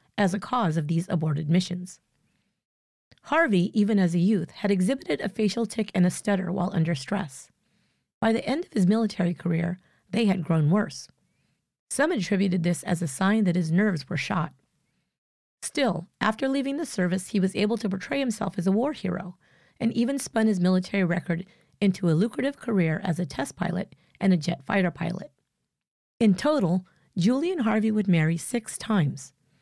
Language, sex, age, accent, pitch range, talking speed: English, female, 40-59, American, 170-220 Hz, 175 wpm